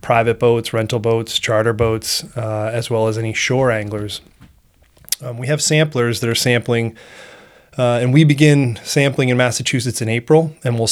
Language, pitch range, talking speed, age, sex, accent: English, 115-130 Hz, 170 wpm, 30-49, male, American